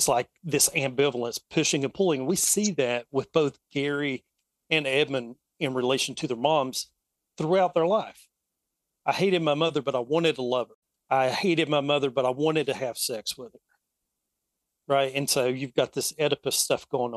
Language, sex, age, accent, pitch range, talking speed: English, male, 40-59, American, 125-160 Hz, 190 wpm